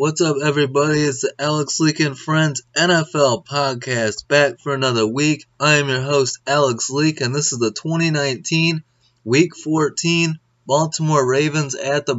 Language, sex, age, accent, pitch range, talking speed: English, male, 20-39, American, 120-145 Hz, 160 wpm